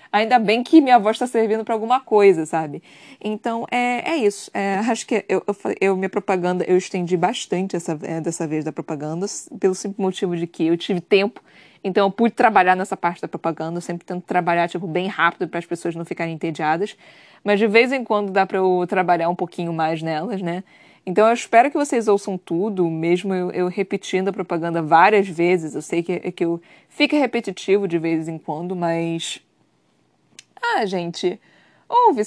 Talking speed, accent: 195 wpm, Brazilian